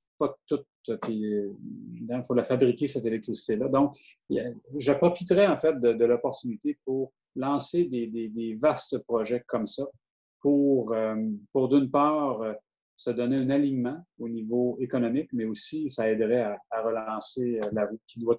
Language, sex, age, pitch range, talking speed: English, male, 30-49, 115-140 Hz, 155 wpm